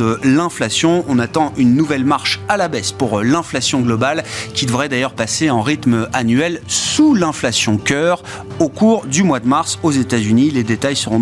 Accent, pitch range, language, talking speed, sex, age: French, 115-165 Hz, French, 180 wpm, male, 30-49